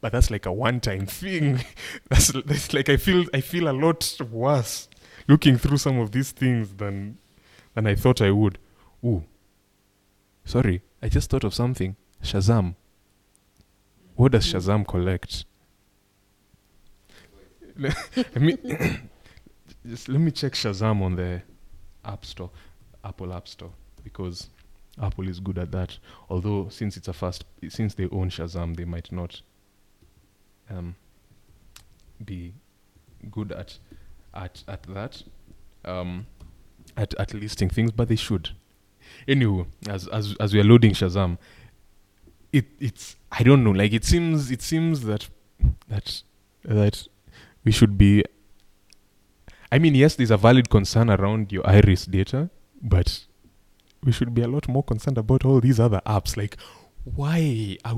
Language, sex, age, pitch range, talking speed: English, male, 20-39, 95-120 Hz, 145 wpm